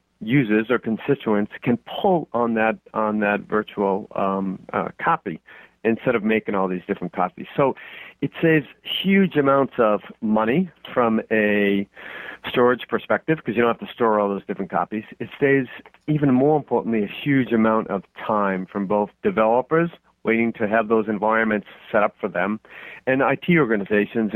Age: 40-59